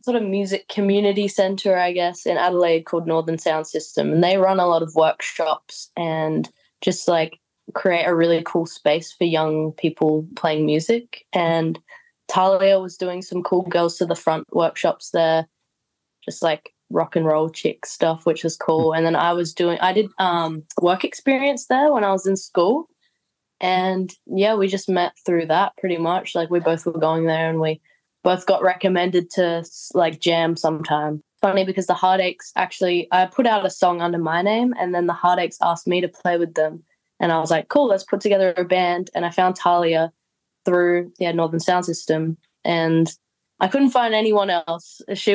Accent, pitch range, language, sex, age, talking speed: Australian, 165-190 Hz, English, female, 20-39, 190 wpm